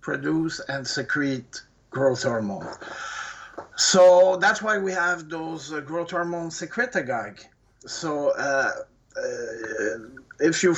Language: English